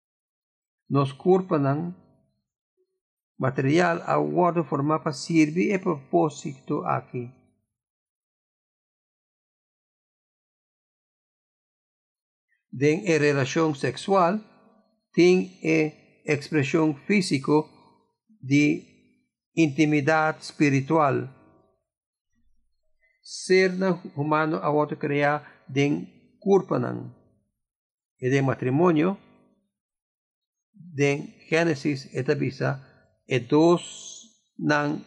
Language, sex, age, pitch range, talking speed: English, male, 50-69, 140-180 Hz, 70 wpm